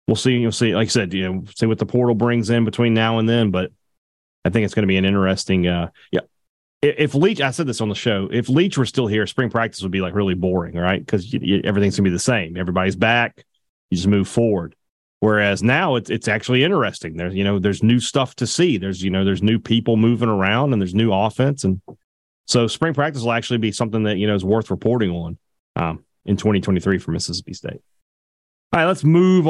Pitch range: 95-125 Hz